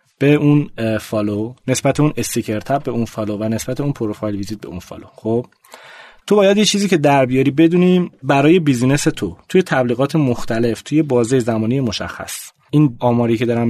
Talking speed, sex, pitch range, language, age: 180 wpm, male, 115-155 Hz, Persian, 30-49